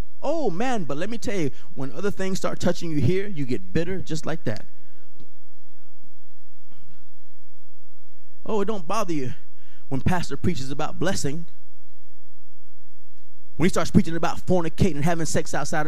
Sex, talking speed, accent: male, 150 wpm, American